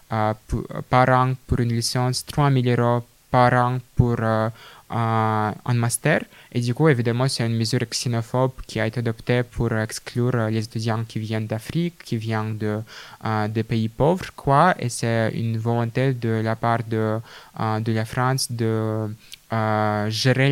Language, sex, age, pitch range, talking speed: French, male, 20-39, 115-130 Hz, 150 wpm